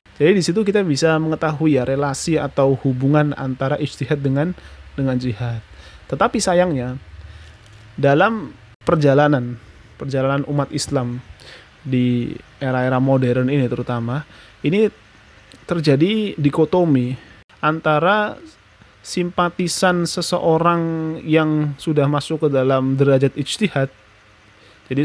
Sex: male